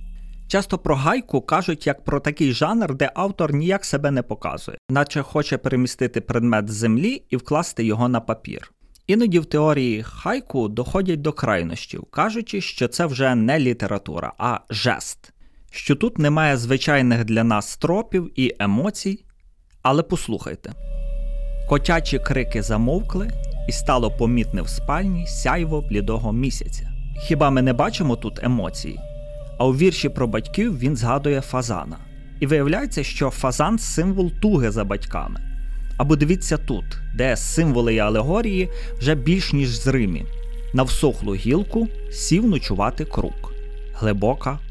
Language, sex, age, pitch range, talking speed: Ukrainian, male, 30-49, 120-170 Hz, 135 wpm